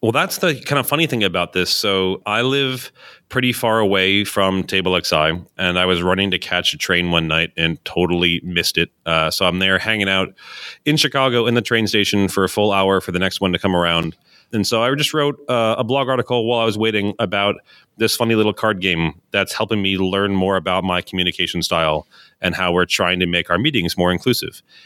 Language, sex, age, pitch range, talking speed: English, male, 30-49, 95-120 Hz, 225 wpm